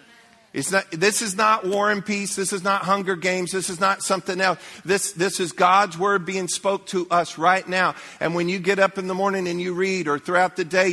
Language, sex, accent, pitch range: English, male, American, 175-205 Hz